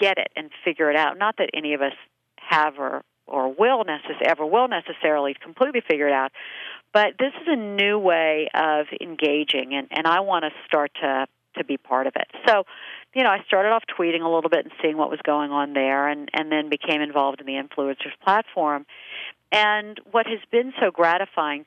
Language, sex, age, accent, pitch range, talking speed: English, female, 50-69, American, 150-210 Hz, 210 wpm